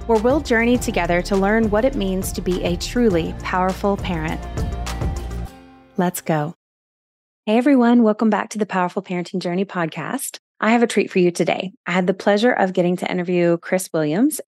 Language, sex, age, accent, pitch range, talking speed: English, female, 30-49, American, 170-215 Hz, 180 wpm